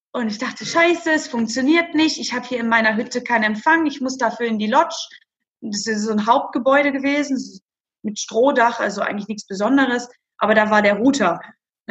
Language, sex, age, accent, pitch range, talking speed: German, female, 20-39, German, 220-275 Hz, 195 wpm